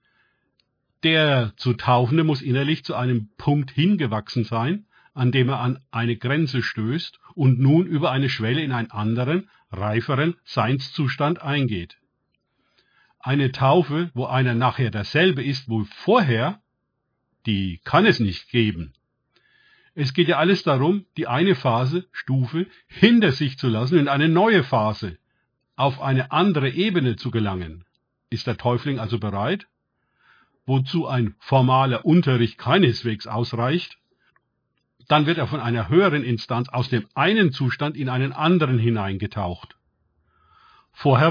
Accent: German